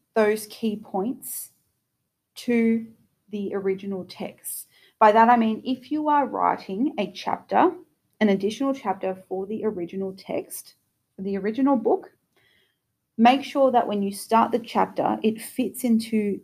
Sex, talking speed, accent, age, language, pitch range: female, 140 wpm, Australian, 30-49, English, 190-230 Hz